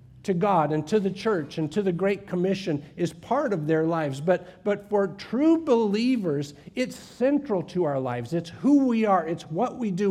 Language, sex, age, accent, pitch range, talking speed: English, male, 50-69, American, 150-200 Hz, 200 wpm